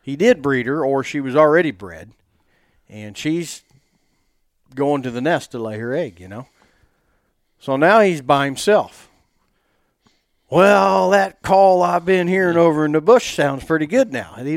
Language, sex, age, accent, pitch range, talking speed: English, male, 50-69, American, 125-165 Hz, 175 wpm